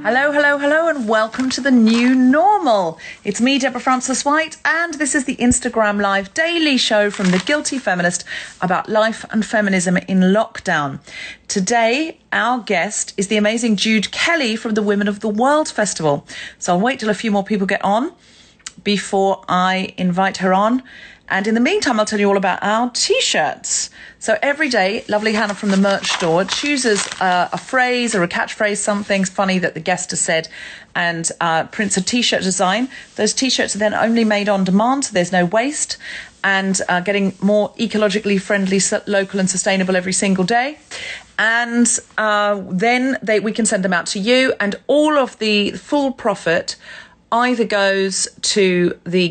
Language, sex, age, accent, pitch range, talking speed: English, female, 40-59, British, 195-250 Hz, 180 wpm